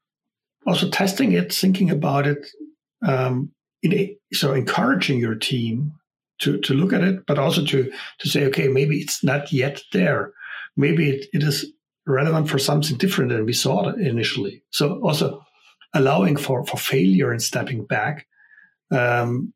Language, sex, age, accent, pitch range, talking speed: English, male, 60-79, German, 130-170 Hz, 155 wpm